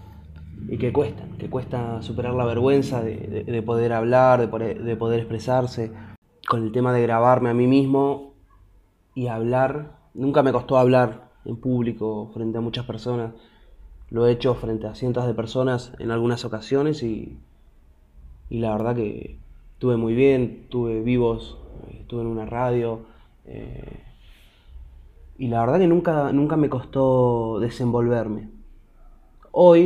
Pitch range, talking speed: 110-130 Hz, 150 wpm